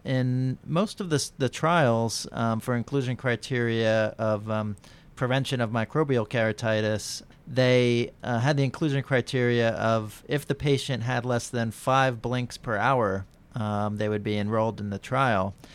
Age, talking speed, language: 40-59, 155 wpm, English